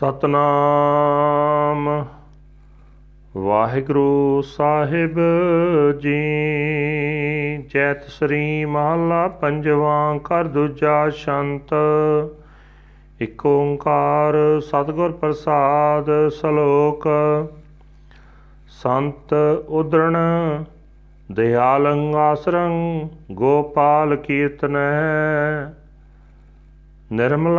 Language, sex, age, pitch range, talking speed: Punjabi, male, 40-59, 145-160 Hz, 50 wpm